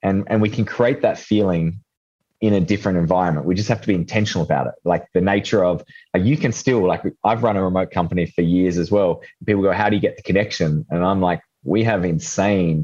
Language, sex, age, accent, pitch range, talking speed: English, male, 20-39, Australian, 90-105 Hz, 240 wpm